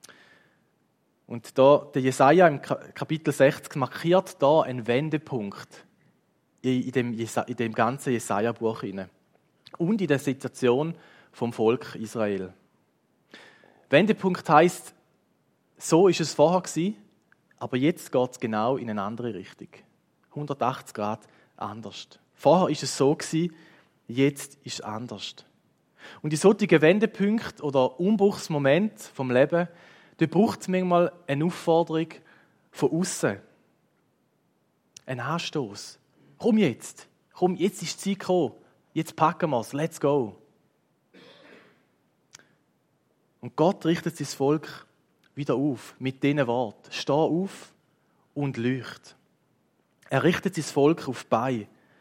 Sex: male